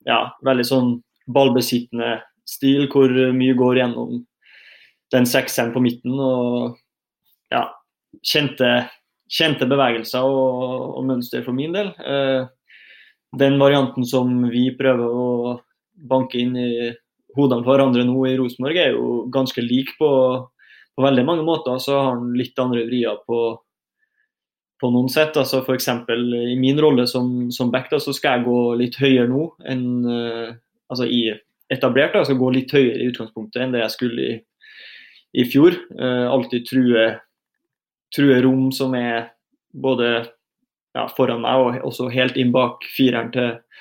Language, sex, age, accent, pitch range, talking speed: English, male, 20-39, Swedish, 120-135 Hz, 145 wpm